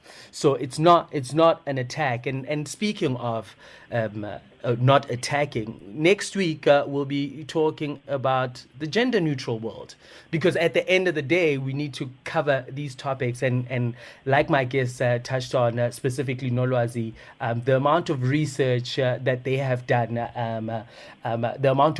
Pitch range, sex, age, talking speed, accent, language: 125-155 Hz, male, 30-49, 170 wpm, South African, English